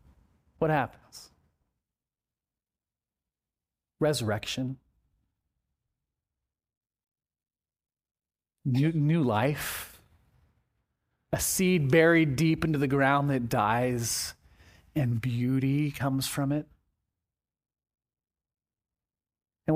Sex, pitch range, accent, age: male, 100-155 Hz, American, 40-59